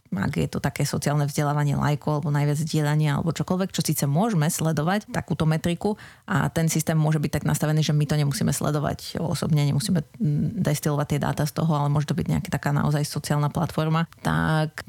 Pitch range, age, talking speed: 150-175 Hz, 30-49, 190 wpm